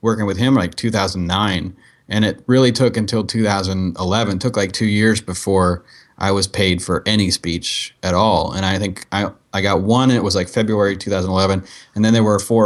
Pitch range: 95-110 Hz